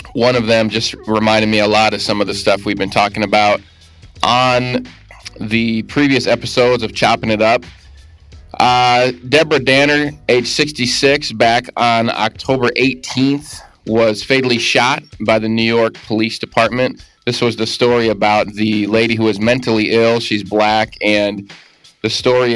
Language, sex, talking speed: English, male, 155 wpm